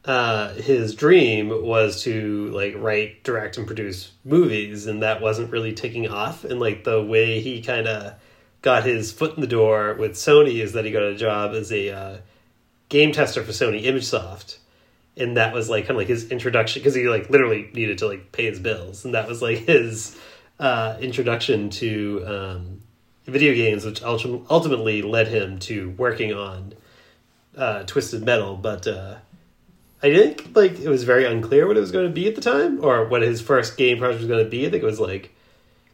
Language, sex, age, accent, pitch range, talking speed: English, male, 30-49, American, 110-140 Hz, 200 wpm